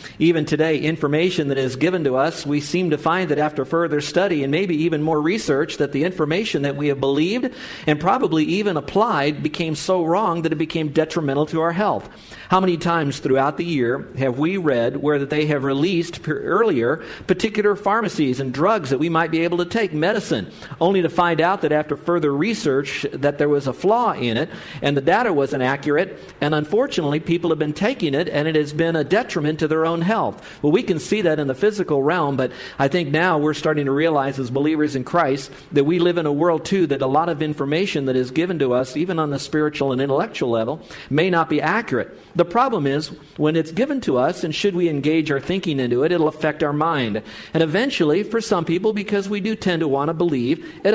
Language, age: English, 50-69